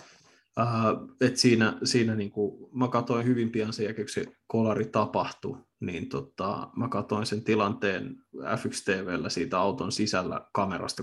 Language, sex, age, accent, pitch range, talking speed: Finnish, male, 20-39, native, 105-120 Hz, 140 wpm